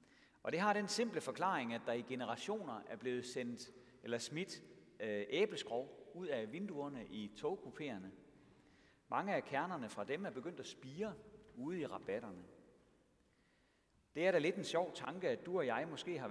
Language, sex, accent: Danish, male, native